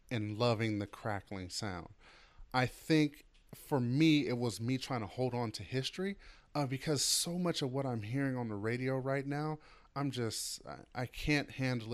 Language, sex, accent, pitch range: English, male, American, 105-135 Hz